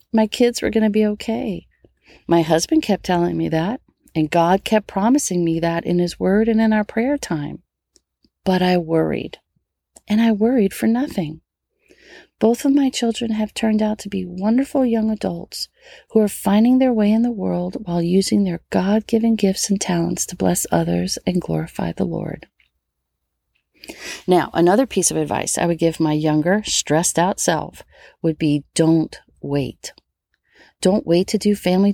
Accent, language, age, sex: American, English, 40-59, female